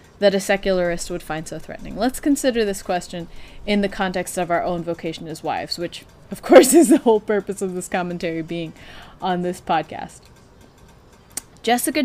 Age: 20-39